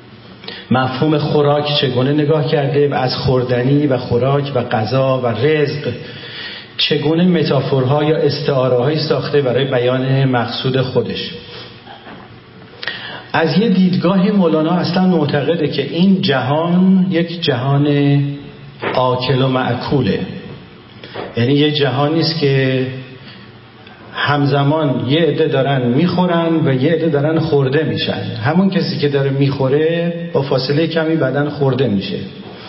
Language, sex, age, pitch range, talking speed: Persian, male, 40-59, 130-160 Hz, 115 wpm